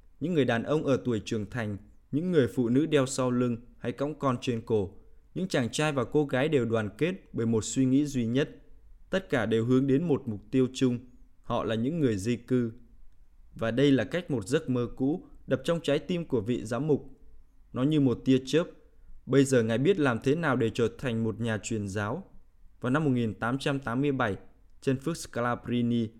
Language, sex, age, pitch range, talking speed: Vietnamese, male, 20-39, 115-140 Hz, 210 wpm